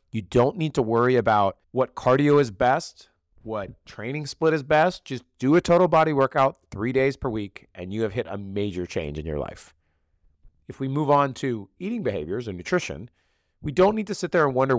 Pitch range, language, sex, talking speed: 100-145 Hz, English, male, 210 wpm